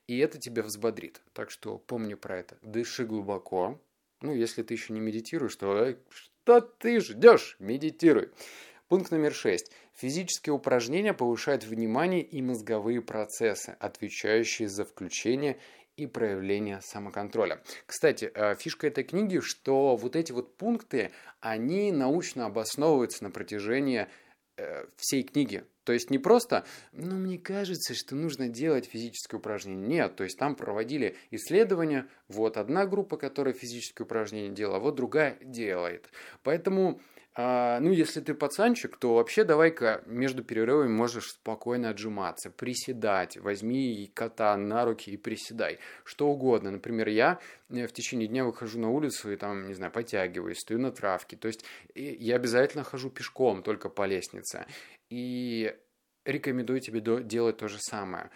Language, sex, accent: Russian, male, native